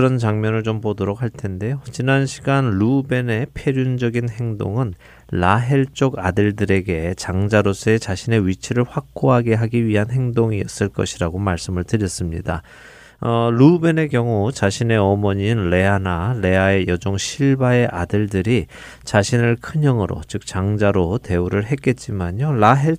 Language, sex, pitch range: Korean, male, 95-130 Hz